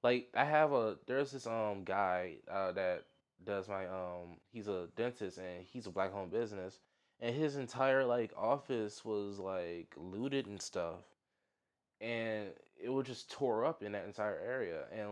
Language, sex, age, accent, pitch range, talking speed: English, male, 20-39, American, 95-125 Hz, 170 wpm